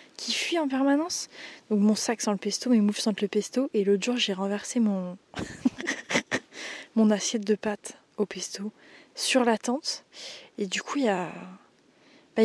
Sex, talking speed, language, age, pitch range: female, 180 wpm, French, 20-39, 200-230 Hz